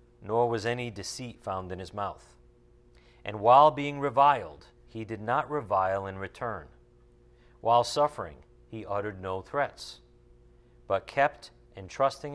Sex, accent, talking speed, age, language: male, American, 130 wpm, 50-69, English